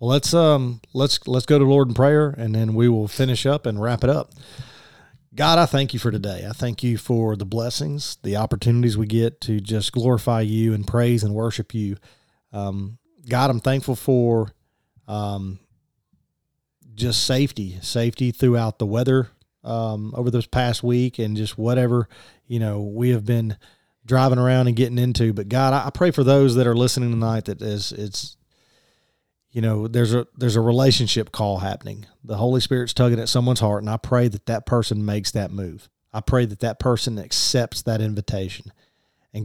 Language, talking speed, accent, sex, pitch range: English, 185 wpm, American, male, 110-125 Hz